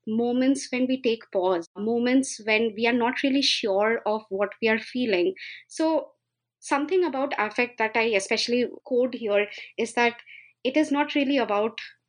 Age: 20-39